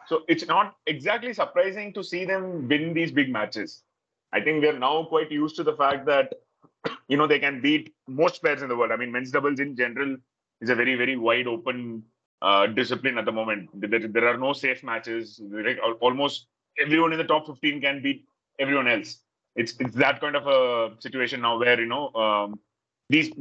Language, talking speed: Hindi, 210 wpm